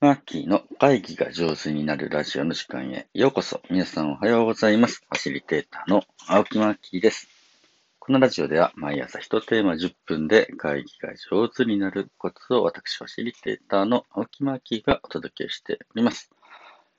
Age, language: 40-59, Japanese